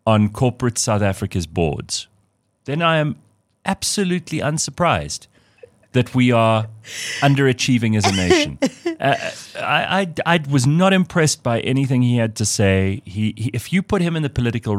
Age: 40-59